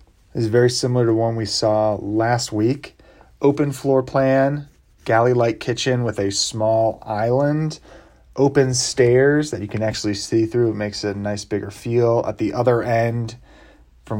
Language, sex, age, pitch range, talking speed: English, male, 30-49, 105-130 Hz, 170 wpm